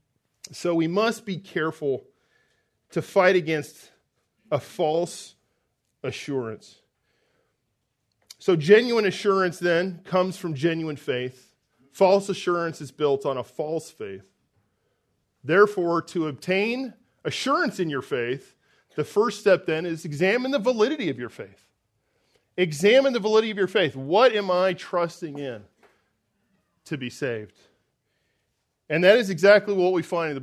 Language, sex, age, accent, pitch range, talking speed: English, male, 40-59, American, 145-200 Hz, 135 wpm